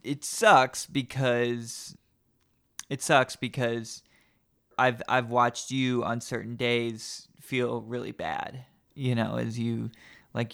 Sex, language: male, English